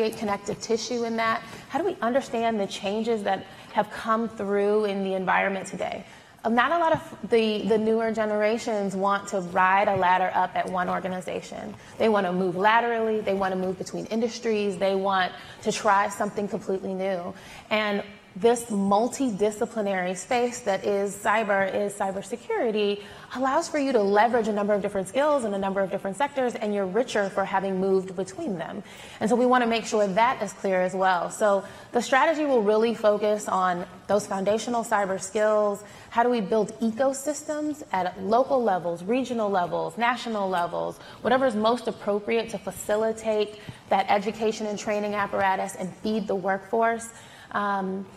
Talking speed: 170 wpm